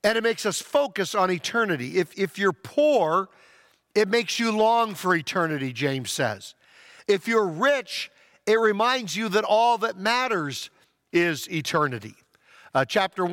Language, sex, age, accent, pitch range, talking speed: English, male, 50-69, American, 180-235 Hz, 150 wpm